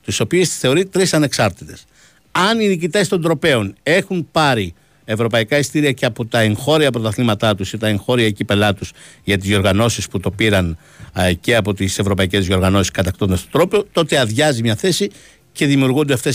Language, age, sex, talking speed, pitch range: Greek, 60-79, male, 175 wpm, 105-145 Hz